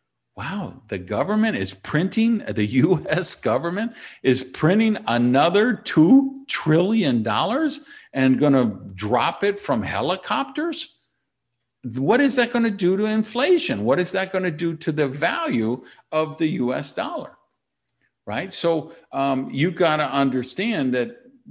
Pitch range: 110-165 Hz